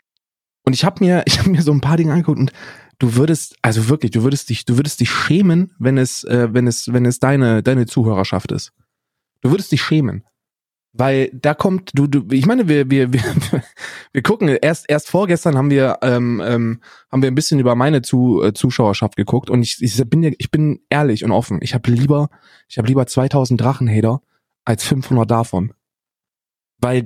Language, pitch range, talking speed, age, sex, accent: German, 120-150 Hz, 195 wpm, 20-39, male, German